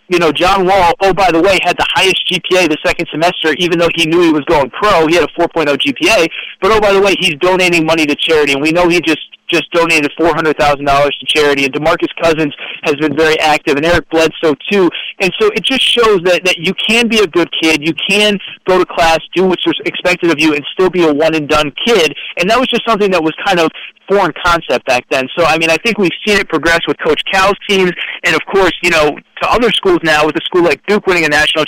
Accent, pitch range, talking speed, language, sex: American, 150-180 Hz, 250 wpm, English, male